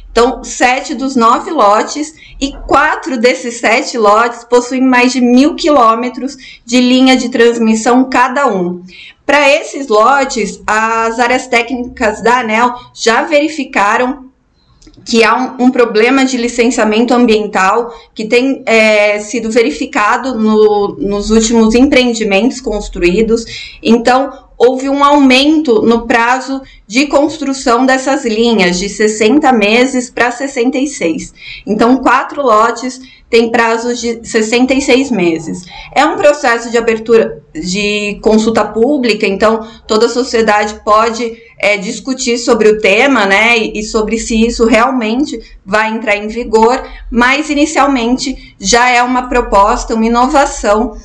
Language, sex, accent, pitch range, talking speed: Portuguese, female, Brazilian, 220-260 Hz, 125 wpm